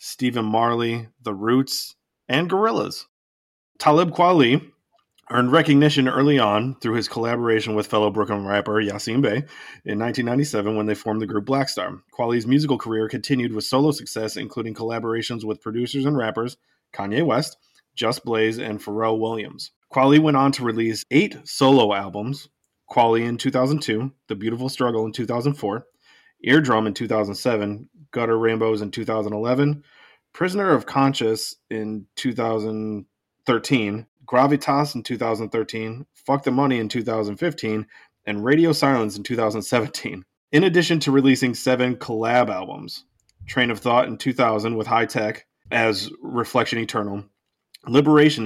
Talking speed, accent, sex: 135 wpm, American, male